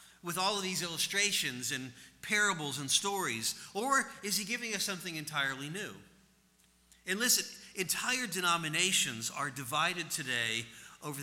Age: 50-69